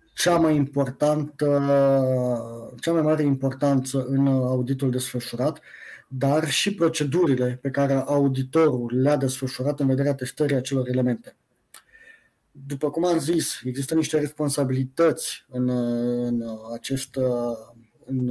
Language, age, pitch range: Romanian, 20-39, 125-150 Hz